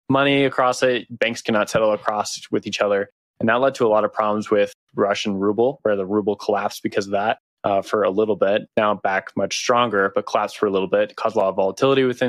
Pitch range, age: 105-125 Hz, 20-39